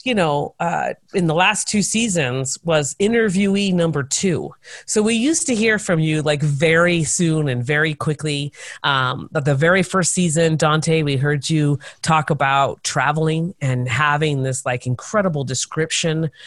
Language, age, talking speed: English, 30-49, 160 wpm